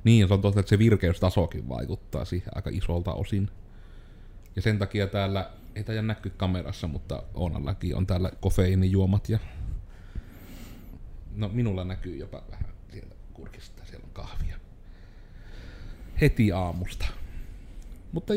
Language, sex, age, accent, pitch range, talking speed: Finnish, male, 30-49, native, 90-110 Hz, 125 wpm